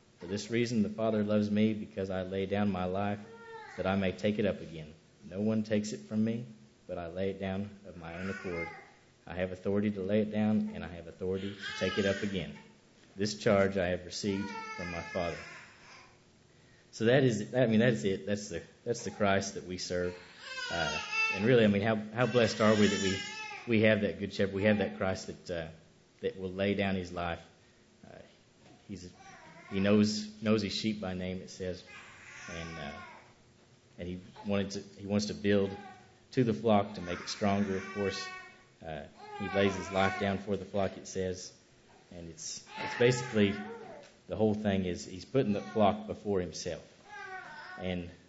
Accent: American